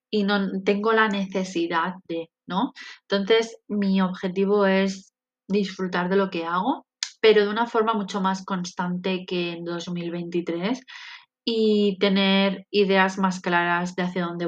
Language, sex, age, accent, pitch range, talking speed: Spanish, female, 20-39, Spanish, 175-195 Hz, 140 wpm